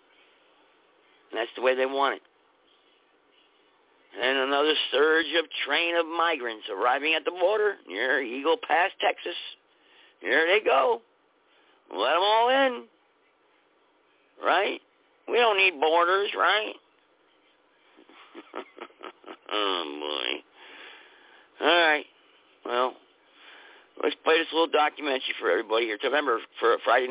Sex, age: male, 50-69